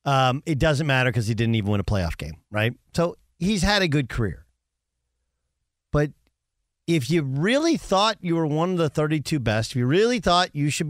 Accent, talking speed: American, 205 wpm